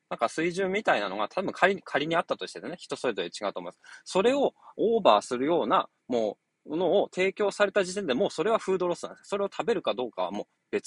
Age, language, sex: 20-39, Japanese, male